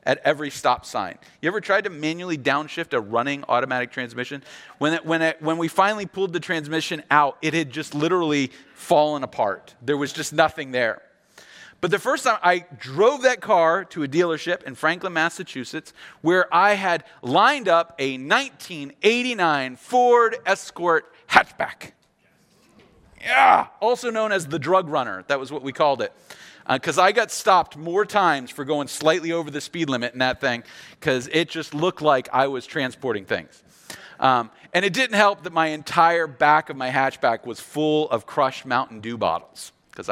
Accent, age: American, 30-49